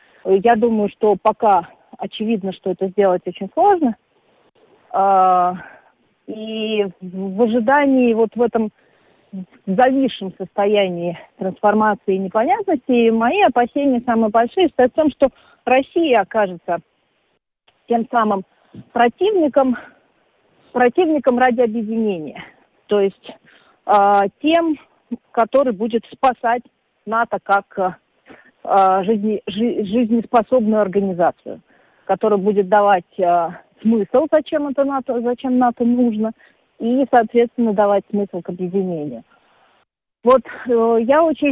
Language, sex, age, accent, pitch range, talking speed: Russian, female, 40-59, native, 190-240 Hz, 95 wpm